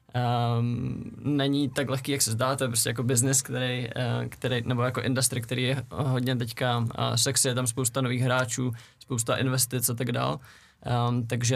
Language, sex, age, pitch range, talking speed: Czech, male, 20-39, 120-130 Hz, 175 wpm